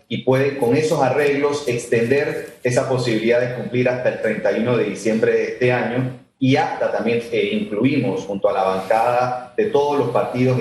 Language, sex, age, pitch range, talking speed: Spanish, male, 30-49, 125-140 Hz, 175 wpm